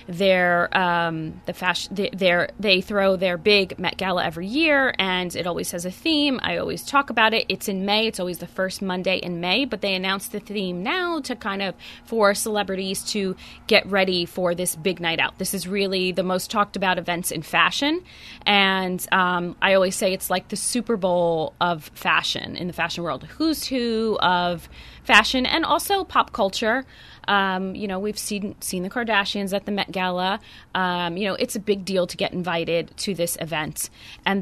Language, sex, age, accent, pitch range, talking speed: English, female, 20-39, American, 180-210 Hz, 195 wpm